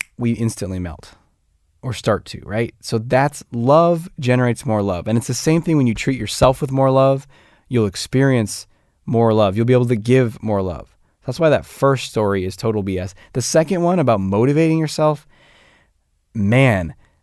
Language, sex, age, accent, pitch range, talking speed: English, male, 20-39, American, 105-135 Hz, 180 wpm